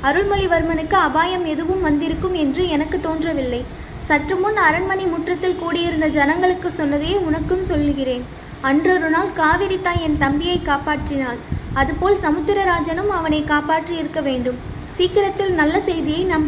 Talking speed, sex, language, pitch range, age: 115 wpm, female, Tamil, 300-370 Hz, 20-39